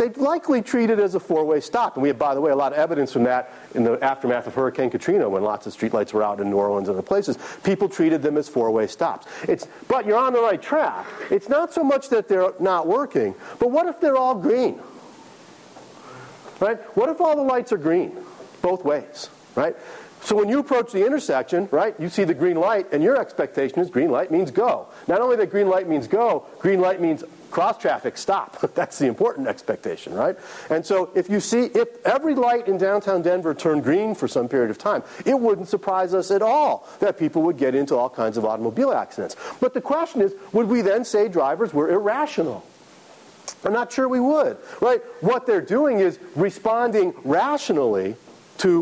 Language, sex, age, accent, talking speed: English, male, 40-59, American, 210 wpm